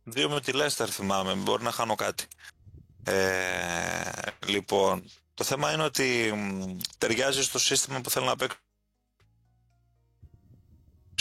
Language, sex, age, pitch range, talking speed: Greek, male, 30-49, 100-130 Hz, 125 wpm